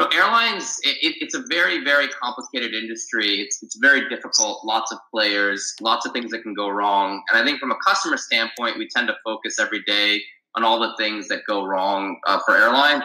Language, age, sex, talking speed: English, 20-39, male, 205 wpm